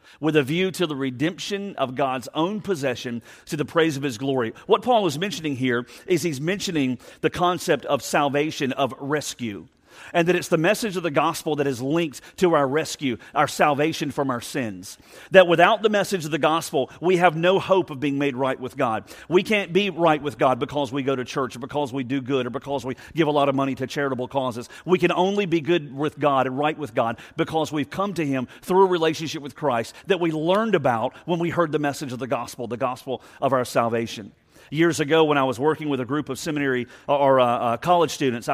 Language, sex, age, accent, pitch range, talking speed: English, male, 40-59, American, 135-170 Hz, 230 wpm